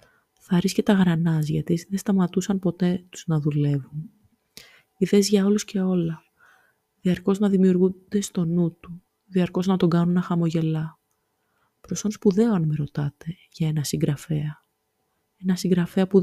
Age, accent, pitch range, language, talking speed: 20-39, native, 170-195 Hz, Greek, 135 wpm